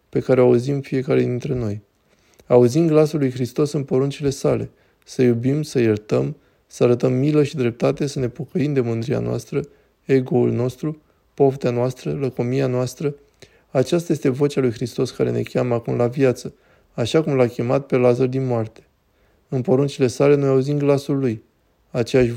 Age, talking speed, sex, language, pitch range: 20-39, 165 wpm, male, Romanian, 120-145 Hz